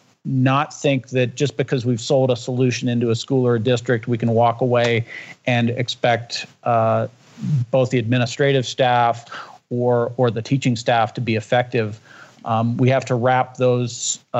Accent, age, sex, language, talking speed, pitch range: American, 50-69, male, English, 165 wpm, 120-140 Hz